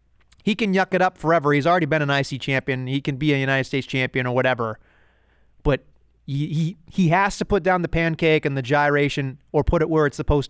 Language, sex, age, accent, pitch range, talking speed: English, male, 30-49, American, 135-170 Hz, 230 wpm